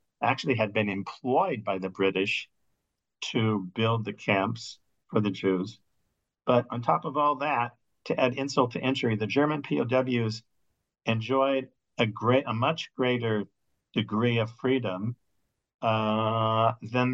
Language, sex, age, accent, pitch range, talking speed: English, male, 50-69, American, 105-125 Hz, 135 wpm